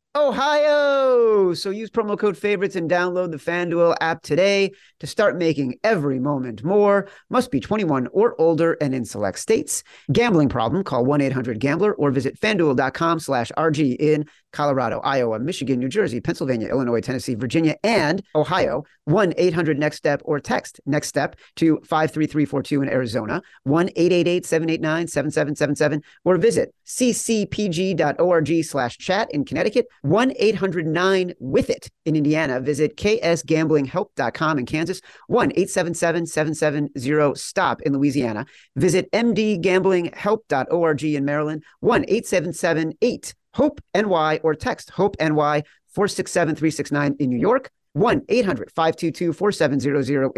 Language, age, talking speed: English, 40-59, 115 wpm